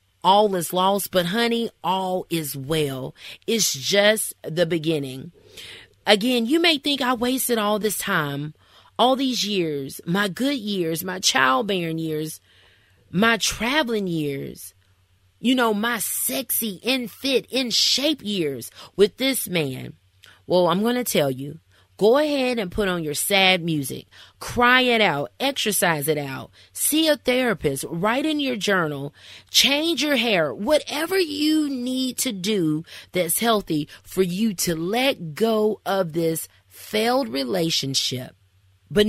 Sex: female